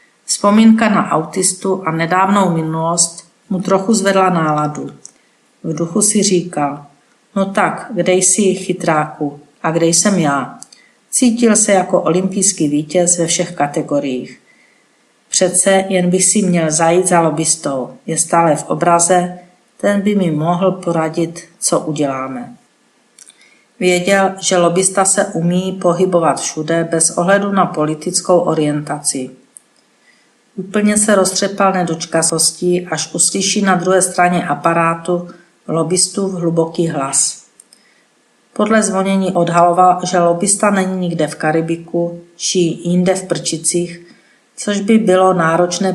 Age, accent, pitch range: 50-69, native, 165-195 Hz